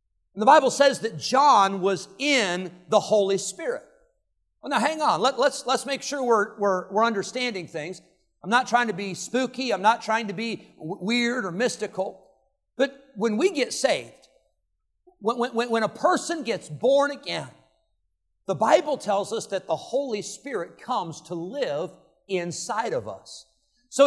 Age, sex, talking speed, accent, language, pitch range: 50-69, male, 165 wpm, American, English, 185-265 Hz